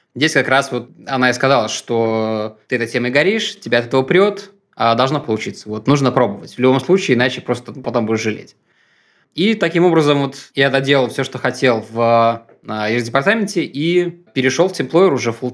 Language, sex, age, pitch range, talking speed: Russian, male, 20-39, 120-150 Hz, 190 wpm